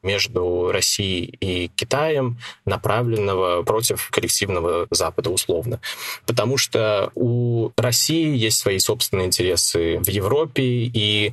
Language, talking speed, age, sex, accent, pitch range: Russian, 105 wpm, 20-39, male, native, 95-120 Hz